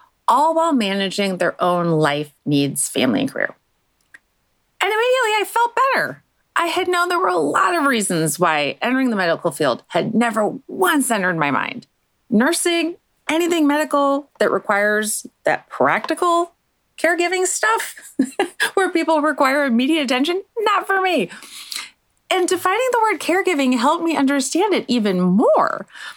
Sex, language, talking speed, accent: female, English, 145 wpm, American